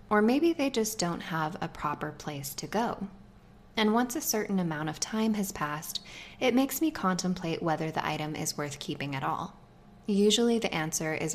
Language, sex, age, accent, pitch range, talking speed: English, female, 10-29, American, 160-220 Hz, 190 wpm